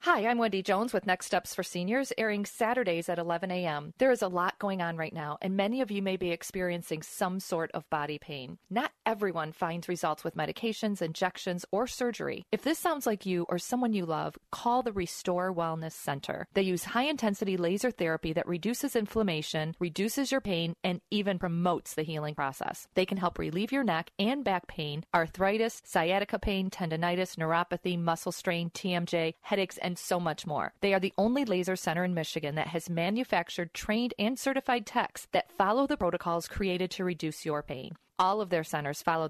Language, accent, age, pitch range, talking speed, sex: English, American, 40-59, 165-210 Hz, 190 wpm, female